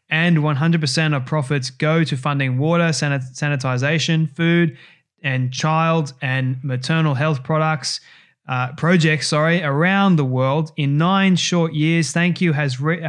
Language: English